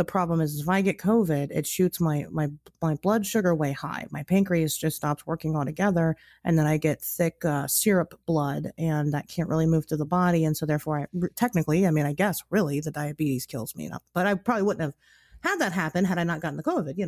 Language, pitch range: English, 155-200 Hz